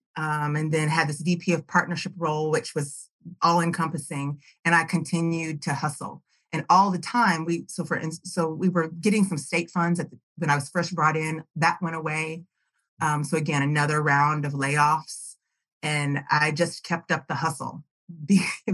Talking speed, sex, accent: 185 wpm, female, American